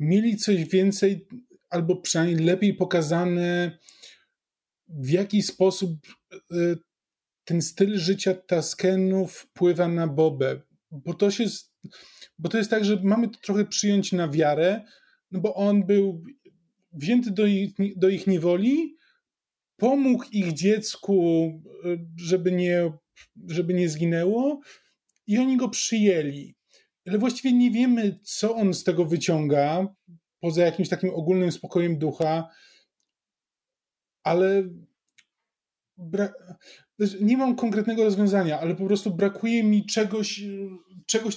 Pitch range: 175-215 Hz